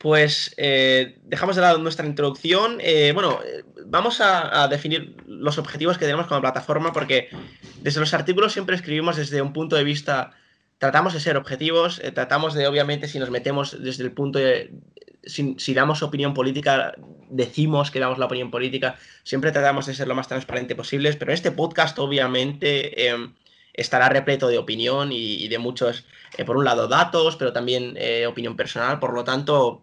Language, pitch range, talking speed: Spanish, 130-160 Hz, 185 wpm